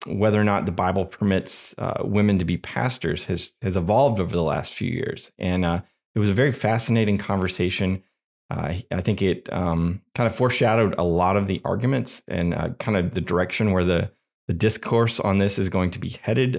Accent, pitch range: American, 85-110 Hz